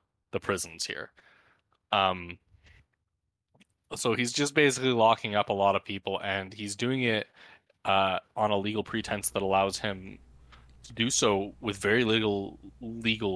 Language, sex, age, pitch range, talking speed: English, male, 20-39, 70-110 Hz, 150 wpm